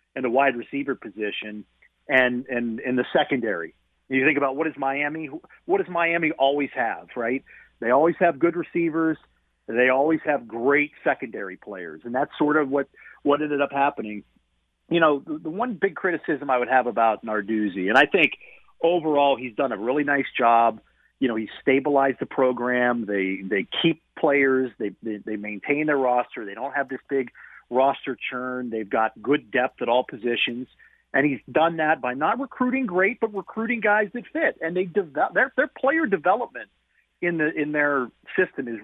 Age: 40-59